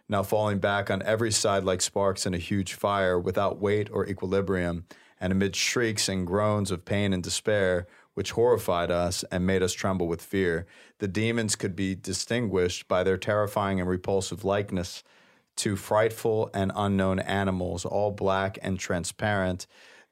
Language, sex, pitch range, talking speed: English, male, 90-105 Hz, 160 wpm